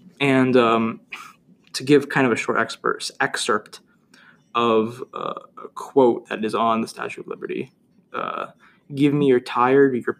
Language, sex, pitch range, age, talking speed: English, male, 120-145 Hz, 20-39, 155 wpm